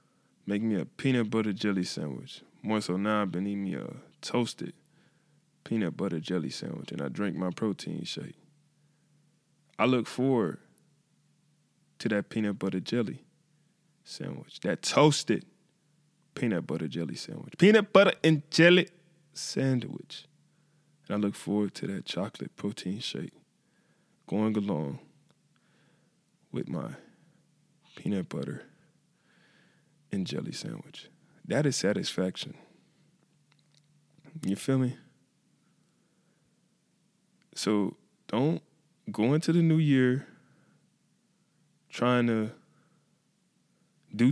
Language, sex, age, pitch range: English, male, 20-39, 110-170 Hz